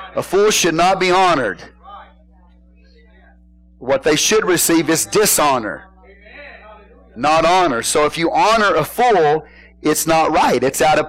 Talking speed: 140 wpm